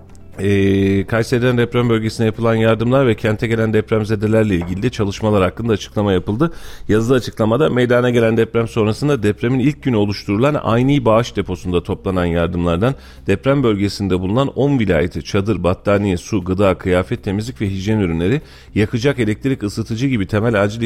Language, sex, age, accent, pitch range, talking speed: Turkish, male, 40-59, native, 90-120 Hz, 145 wpm